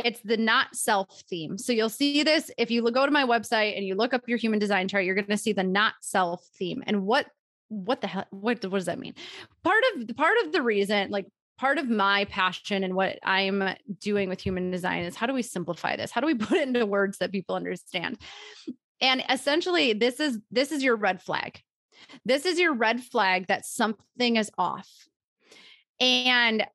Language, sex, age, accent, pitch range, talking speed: English, female, 20-39, American, 200-255 Hz, 215 wpm